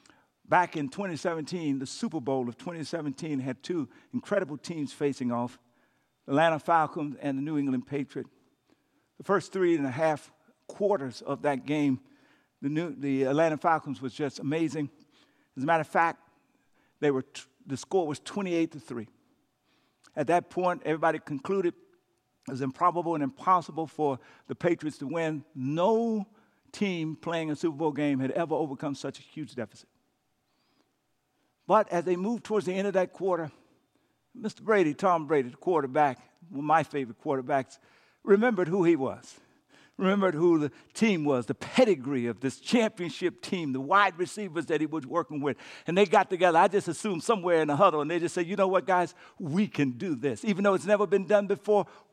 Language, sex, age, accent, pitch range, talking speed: English, male, 50-69, American, 145-195 Hz, 180 wpm